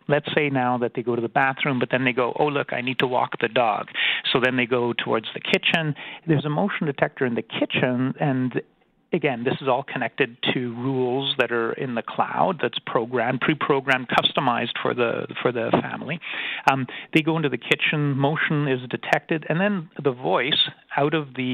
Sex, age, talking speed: male, 40-59, 205 wpm